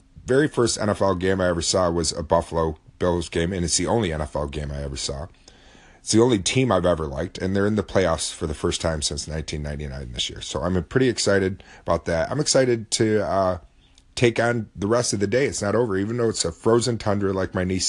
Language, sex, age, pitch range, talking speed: English, male, 30-49, 80-105 Hz, 235 wpm